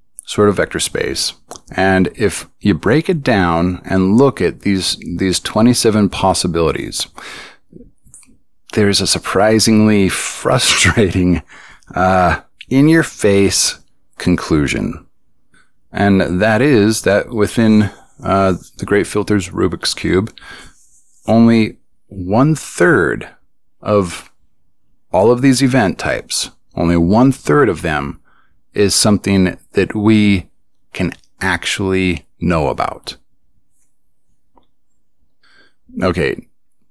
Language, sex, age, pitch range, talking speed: English, male, 30-49, 90-110 Hz, 90 wpm